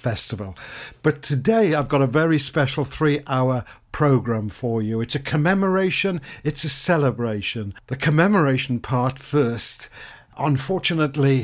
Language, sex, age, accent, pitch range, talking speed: English, male, 60-79, British, 115-145 Hz, 120 wpm